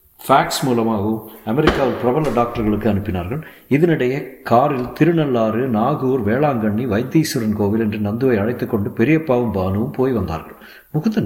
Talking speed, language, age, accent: 110 wpm, Tamil, 60-79, native